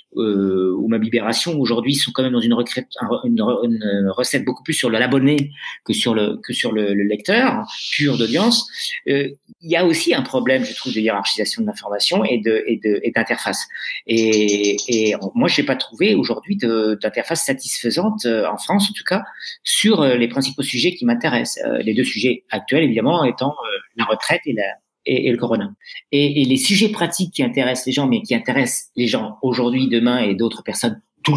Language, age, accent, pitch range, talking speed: French, 40-59, French, 120-190 Hz, 200 wpm